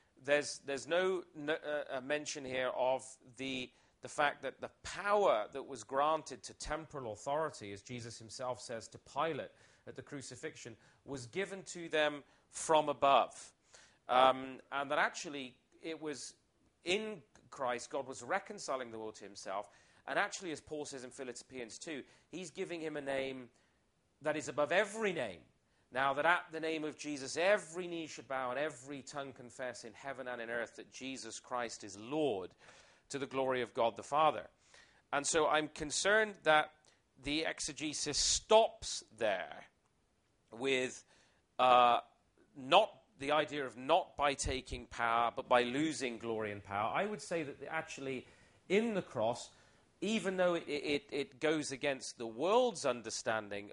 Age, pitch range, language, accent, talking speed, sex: 40-59, 125-155 Hz, English, British, 160 wpm, male